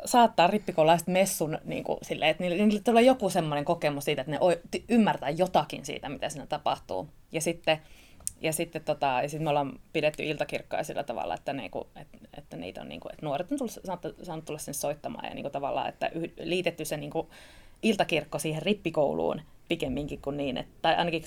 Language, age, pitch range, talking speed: Finnish, 20-39, 150-185 Hz, 180 wpm